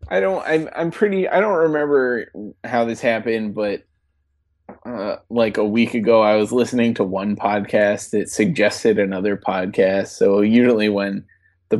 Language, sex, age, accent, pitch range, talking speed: English, male, 20-39, American, 95-120 Hz, 160 wpm